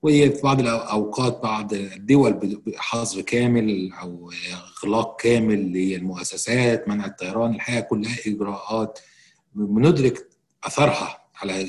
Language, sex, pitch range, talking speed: Arabic, male, 100-125 Hz, 100 wpm